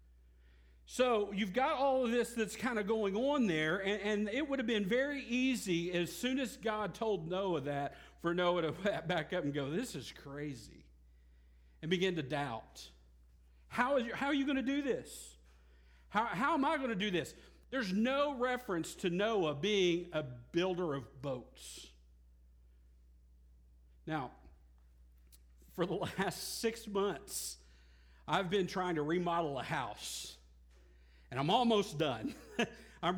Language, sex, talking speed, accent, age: English, male, 155 wpm, American, 50-69